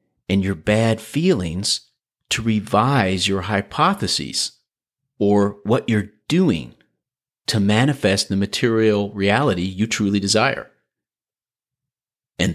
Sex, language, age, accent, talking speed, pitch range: male, English, 40-59, American, 100 wpm, 90-115 Hz